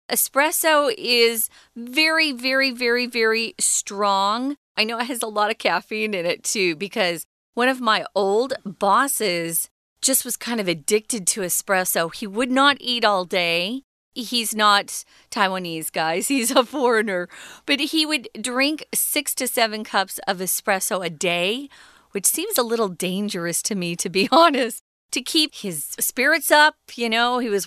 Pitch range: 190-255 Hz